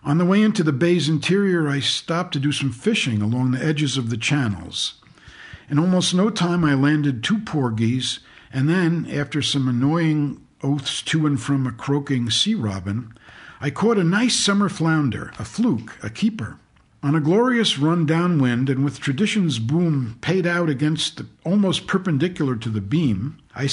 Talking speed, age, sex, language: 175 wpm, 50-69, male, English